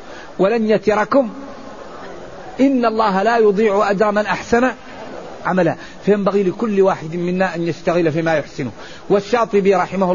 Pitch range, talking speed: 175-210 Hz, 120 wpm